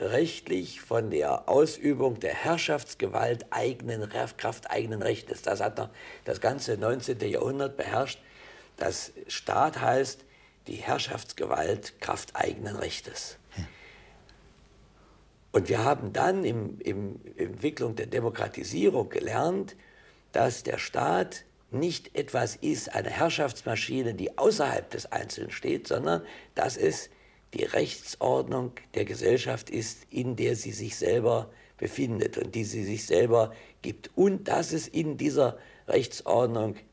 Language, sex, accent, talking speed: German, male, German, 120 wpm